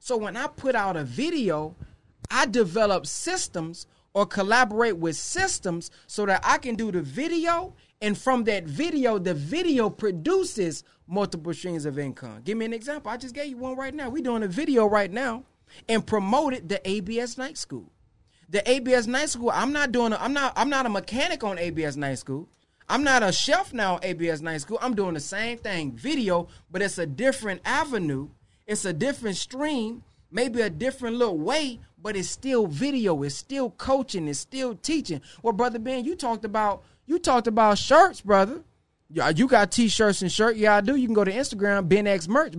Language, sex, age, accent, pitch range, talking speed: English, male, 30-49, American, 190-260 Hz, 195 wpm